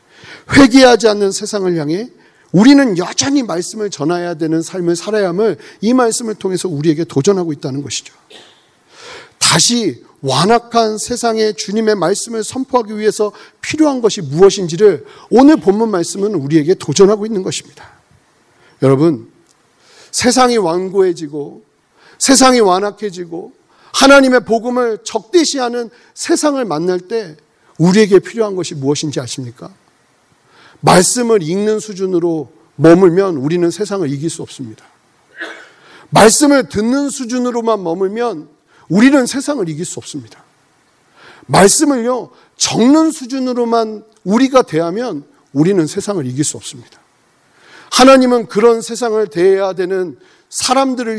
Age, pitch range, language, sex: 40-59, 165-235 Hz, Korean, male